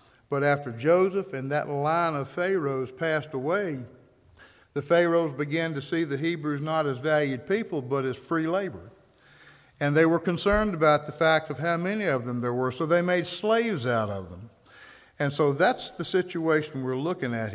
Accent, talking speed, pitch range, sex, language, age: American, 185 wpm, 130-170 Hz, male, English, 60-79